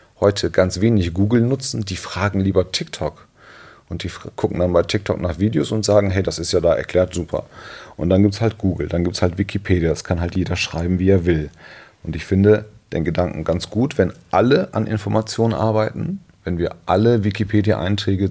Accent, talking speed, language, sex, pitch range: German, 200 wpm, German, male, 90-110 Hz